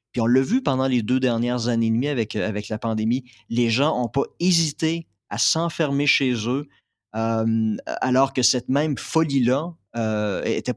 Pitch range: 110-135 Hz